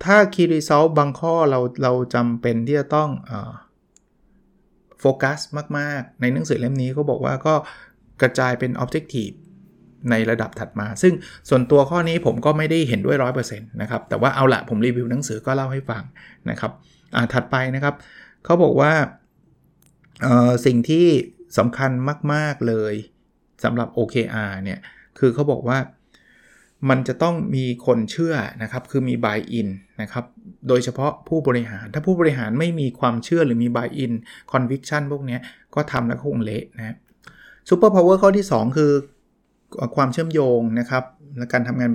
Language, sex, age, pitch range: Thai, male, 20-39, 120-150 Hz